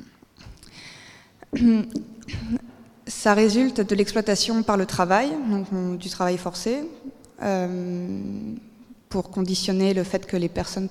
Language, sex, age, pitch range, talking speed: French, female, 20-39, 185-225 Hz, 105 wpm